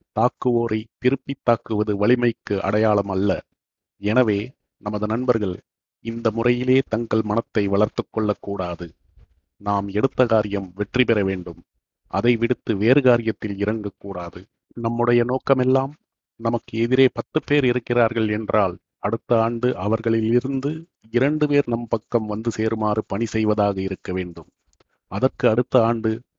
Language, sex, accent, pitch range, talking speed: Tamil, male, native, 105-125 Hz, 115 wpm